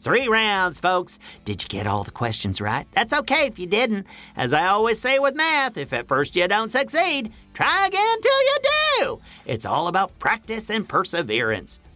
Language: English